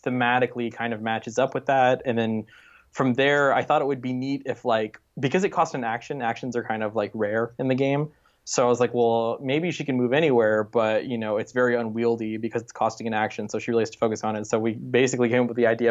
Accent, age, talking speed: American, 20-39, 265 wpm